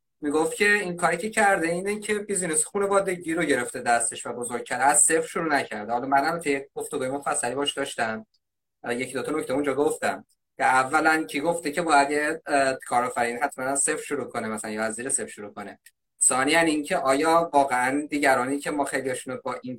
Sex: male